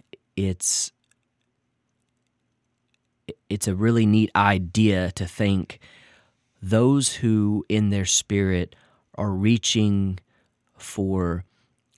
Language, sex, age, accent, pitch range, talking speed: English, male, 30-49, American, 95-110 Hz, 80 wpm